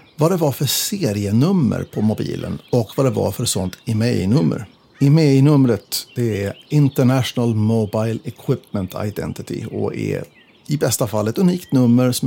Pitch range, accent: 115-155 Hz, native